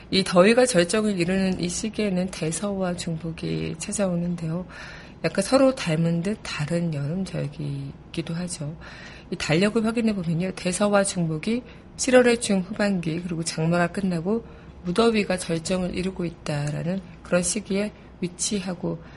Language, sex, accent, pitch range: Korean, female, native, 165-200 Hz